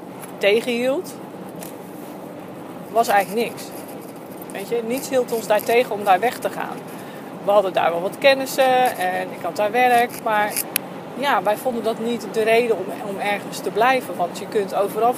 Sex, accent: female, Dutch